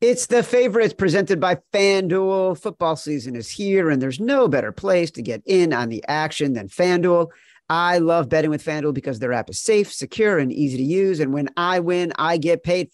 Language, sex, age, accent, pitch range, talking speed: English, male, 40-59, American, 140-180 Hz, 210 wpm